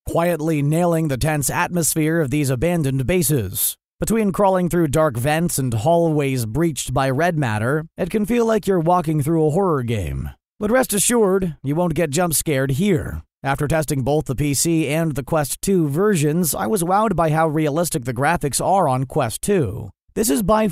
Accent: American